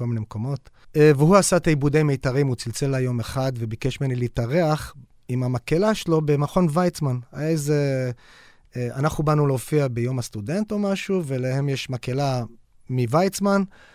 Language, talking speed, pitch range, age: Hebrew, 140 wpm, 125-175 Hz, 30-49